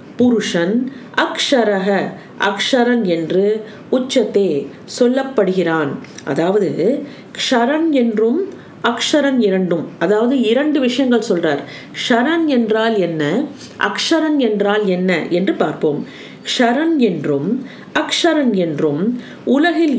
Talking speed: 85 wpm